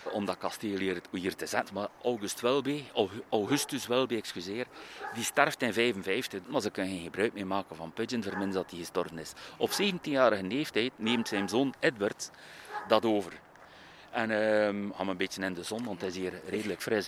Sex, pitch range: male, 100-125 Hz